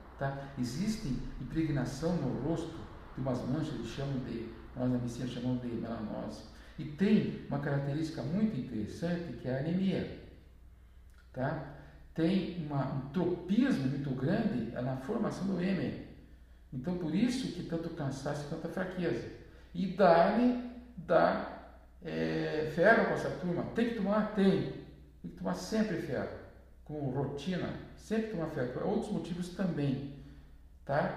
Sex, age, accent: male, 50-69, Brazilian